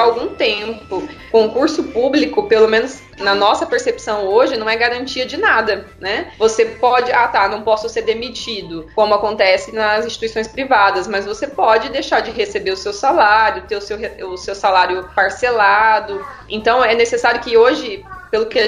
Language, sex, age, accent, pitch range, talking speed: Portuguese, female, 20-39, Brazilian, 205-285 Hz, 165 wpm